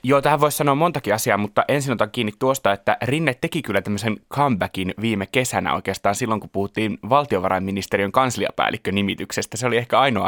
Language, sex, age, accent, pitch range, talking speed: Finnish, male, 20-39, native, 100-125 Hz, 170 wpm